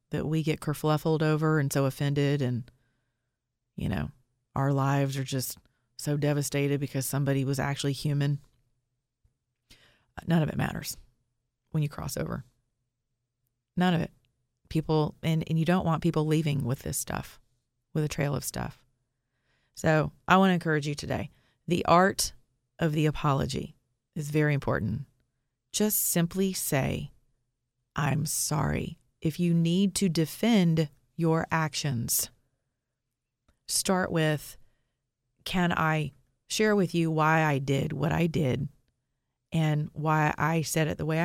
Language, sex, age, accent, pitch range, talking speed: English, female, 30-49, American, 125-160 Hz, 140 wpm